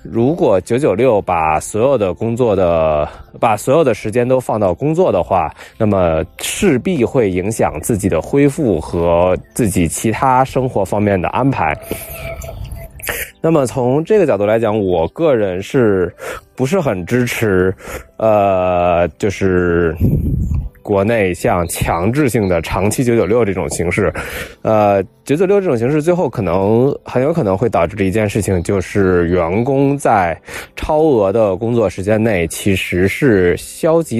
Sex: male